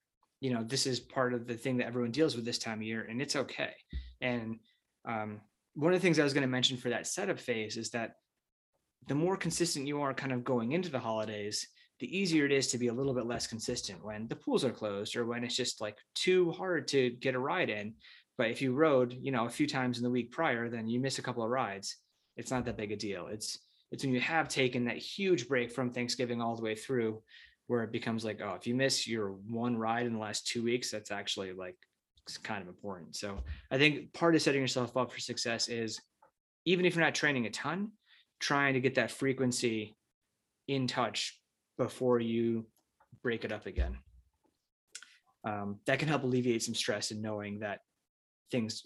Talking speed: 220 wpm